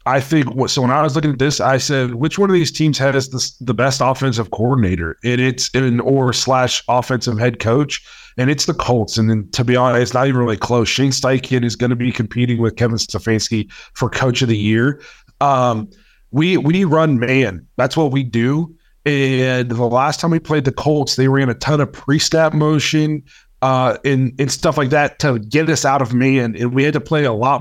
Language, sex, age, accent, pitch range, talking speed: English, male, 30-49, American, 120-145 Hz, 230 wpm